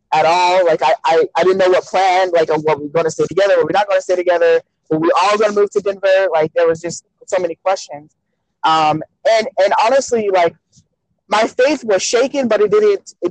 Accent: American